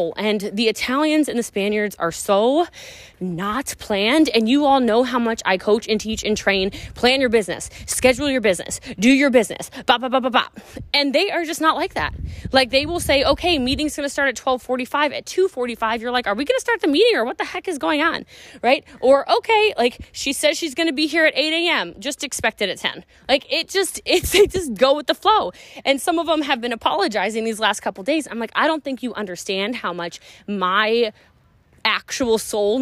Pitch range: 210-285 Hz